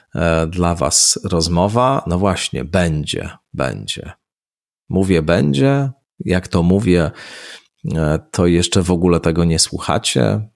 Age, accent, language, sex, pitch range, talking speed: 40-59, native, Polish, male, 85-105 Hz, 110 wpm